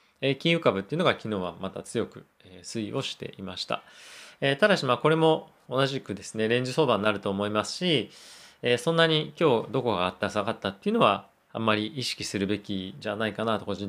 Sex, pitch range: male, 100-130 Hz